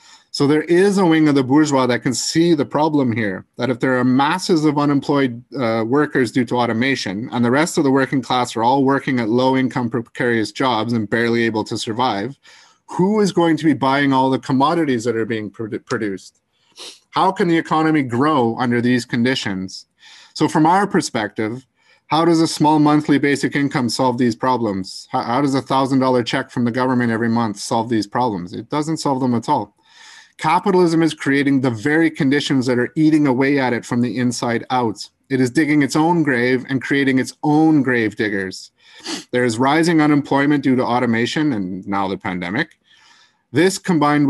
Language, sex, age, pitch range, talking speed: English, male, 30-49, 120-150 Hz, 190 wpm